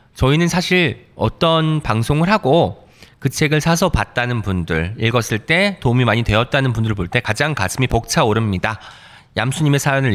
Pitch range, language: 110-165 Hz, Korean